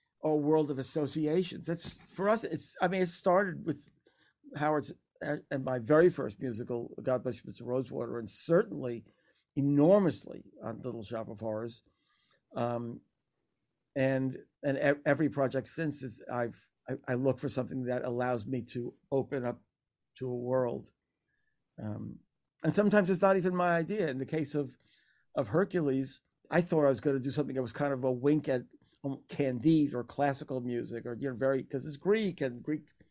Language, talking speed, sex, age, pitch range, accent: English, 175 wpm, male, 50-69, 130-165 Hz, American